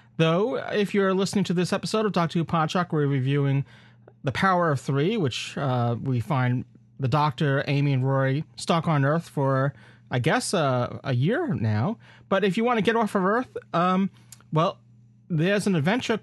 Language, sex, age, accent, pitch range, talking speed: English, male, 30-49, American, 125-170 Hz, 185 wpm